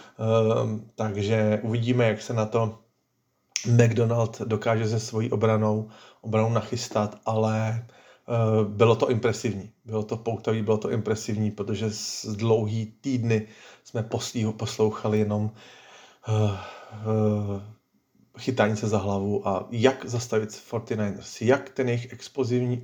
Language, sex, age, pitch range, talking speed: Slovak, male, 40-59, 110-120 Hz, 120 wpm